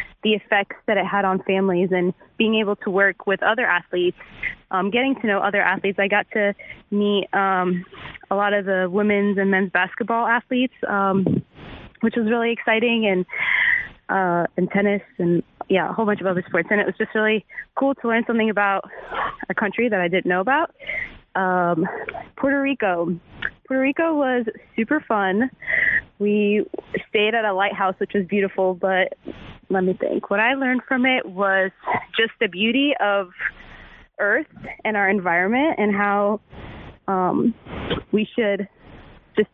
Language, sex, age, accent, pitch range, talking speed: English, female, 20-39, American, 190-230 Hz, 165 wpm